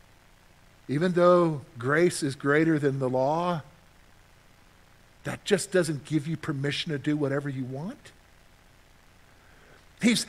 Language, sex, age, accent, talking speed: English, male, 50-69, American, 115 wpm